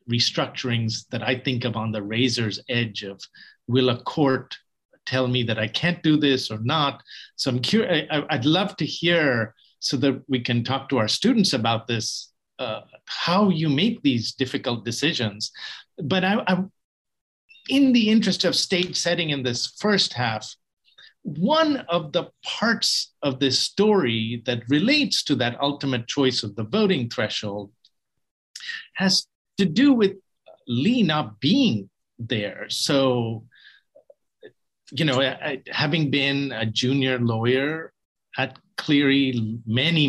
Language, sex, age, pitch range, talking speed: English, male, 50-69, 120-170 Hz, 145 wpm